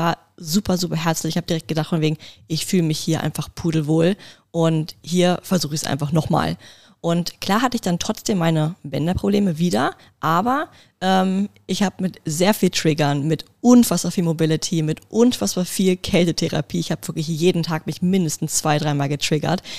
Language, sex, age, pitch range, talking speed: German, female, 20-39, 160-190 Hz, 170 wpm